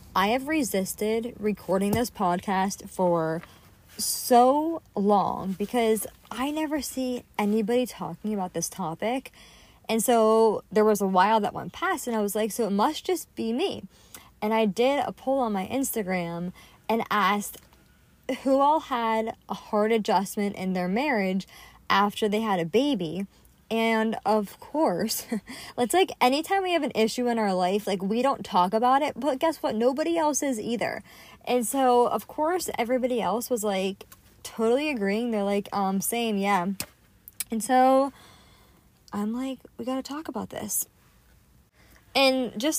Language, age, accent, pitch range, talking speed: English, 20-39, American, 200-255 Hz, 160 wpm